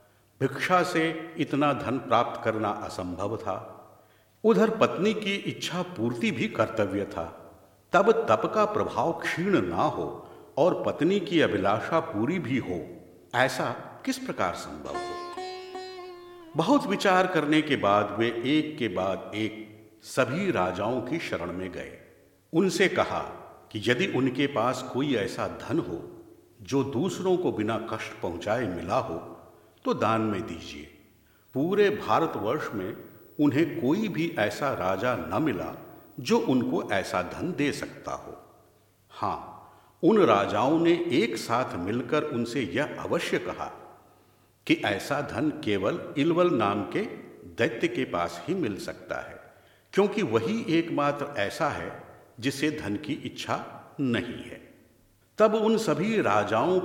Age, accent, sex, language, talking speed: 50-69, native, male, Hindi, 135 wpm